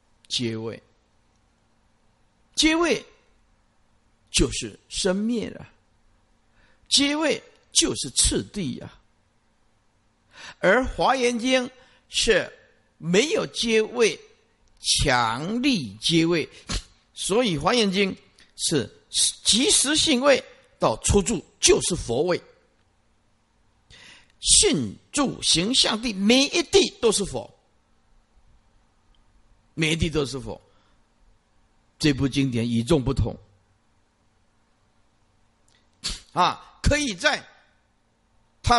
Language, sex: Chinese, male